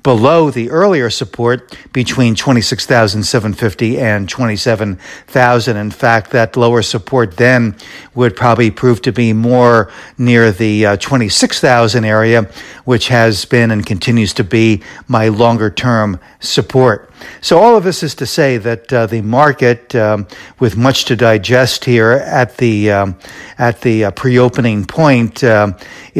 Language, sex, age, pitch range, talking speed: English, male, 60-79, 110-135 Hz, 140 wpm